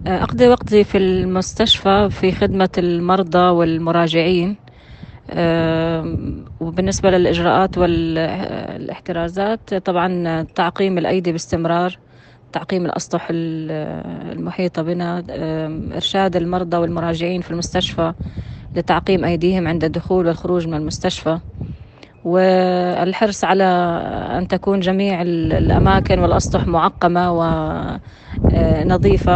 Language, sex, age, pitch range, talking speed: Arabic, female, 20-39, 170-190 Hz, 80 wpm